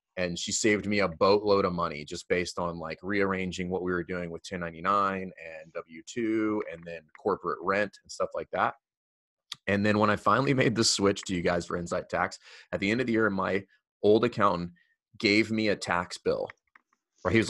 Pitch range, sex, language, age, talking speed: 95-115 Hz, male, English, 30-49, 205 wpm